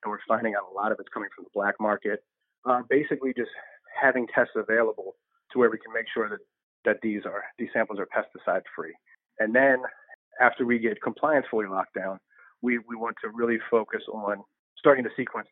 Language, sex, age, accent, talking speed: English, male, 30-49, American, 200 wpm